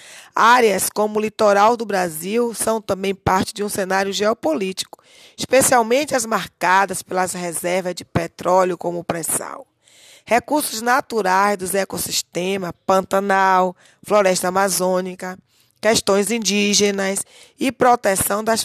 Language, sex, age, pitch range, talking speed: Portuguese, female, 20-39, 185-230 Hz, 115 wpm